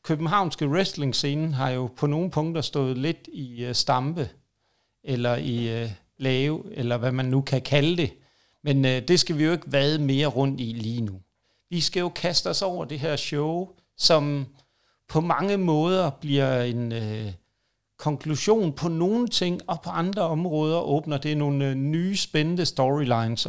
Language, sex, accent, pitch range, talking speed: Danish, male, native, 130-165 Hz, 160 wpm